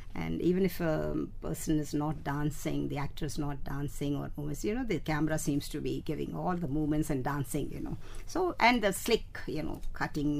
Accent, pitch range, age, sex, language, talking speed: native, 145-200 Hz, 60-79, female, Hindi, 215 wpm